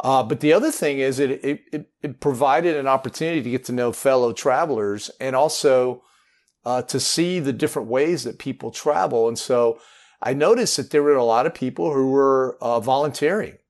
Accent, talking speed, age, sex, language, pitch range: American, 195 wpm, 40-59, male, English, 120-150 Hz